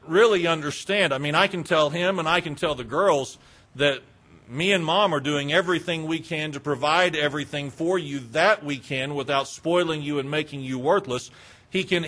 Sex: male